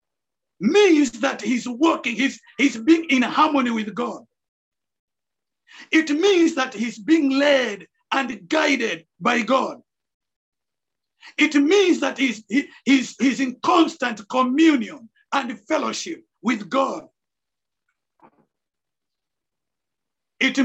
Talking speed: 100 wpm